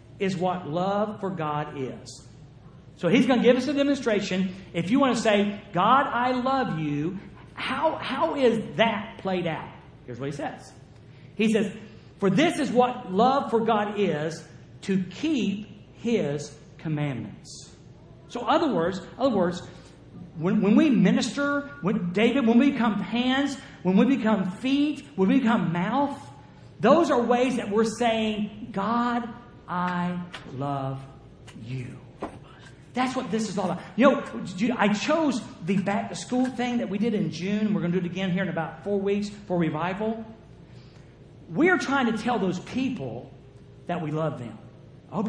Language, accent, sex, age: English, American, male, 50-69